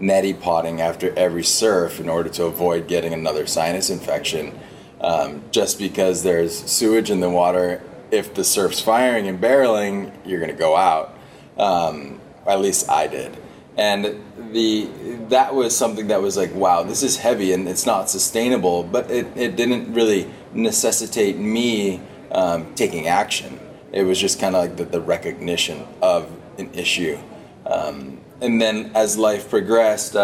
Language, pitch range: English, 90-110 Hz